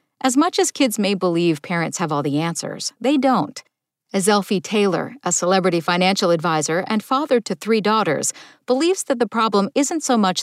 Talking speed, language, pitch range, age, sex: 185 wpm, English, 170-255 Hz, 50-69, female